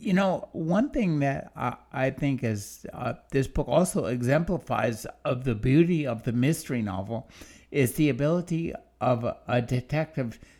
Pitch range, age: 125-165 Hz, 60-79